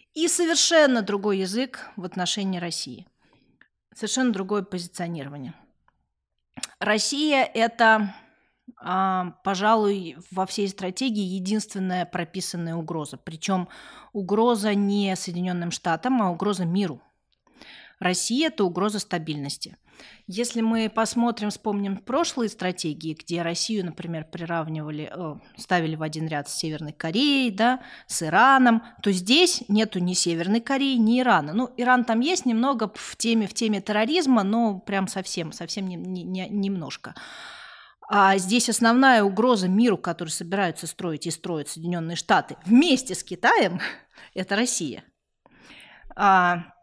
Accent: native